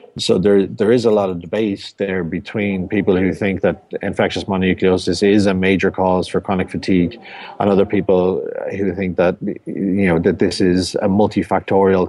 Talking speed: 180 wpm